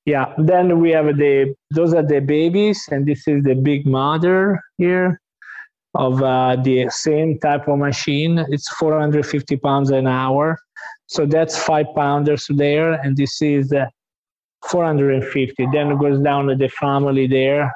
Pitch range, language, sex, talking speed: 130-155 Hz, English, male, 155 wpm